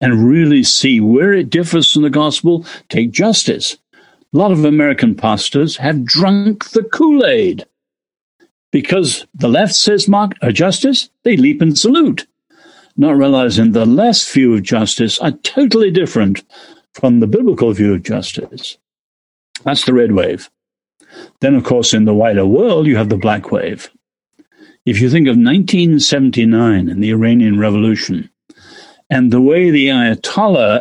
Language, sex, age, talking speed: English, male, 60-79, 150 wpm